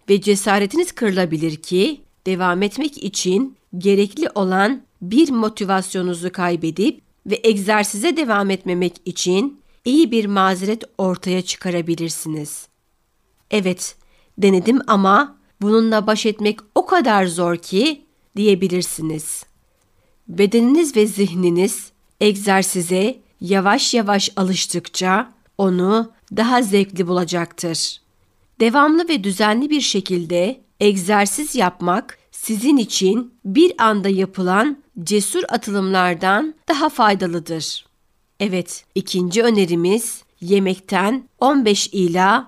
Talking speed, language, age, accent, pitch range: 95 wpm, Turkish, 60-79, native, 185-230 Hz